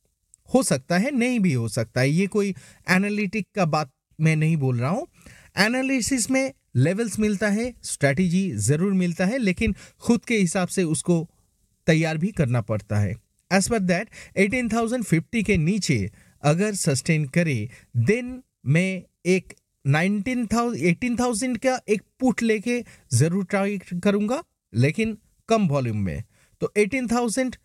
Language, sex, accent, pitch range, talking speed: Hindi, male, native, 155-220 Hz, 150 wpm